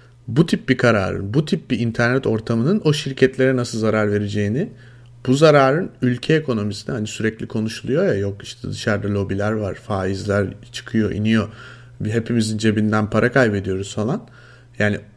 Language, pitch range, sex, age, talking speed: Turkish, 110-130 Hz, male, 30-49, 140 wpm